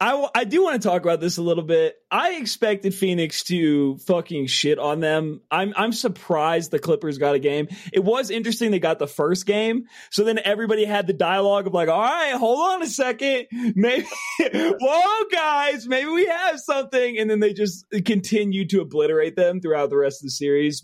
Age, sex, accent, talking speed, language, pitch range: 30-49, male, American, 205 wpm, English, 145-220 Hz